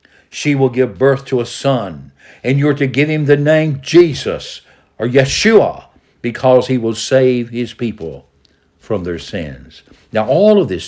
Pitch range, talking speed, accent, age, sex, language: 115-140 Hz, 170 wpm, American, 60-79, male, English